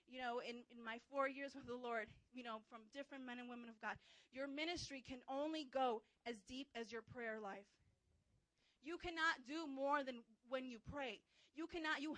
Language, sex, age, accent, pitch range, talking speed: English, female, 30-49, American, 250-310 Hz, 200 wpm